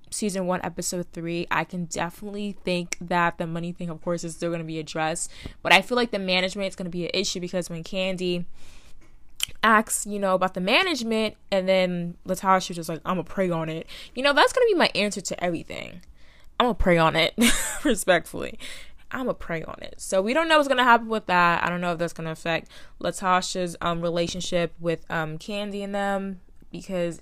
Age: 20-39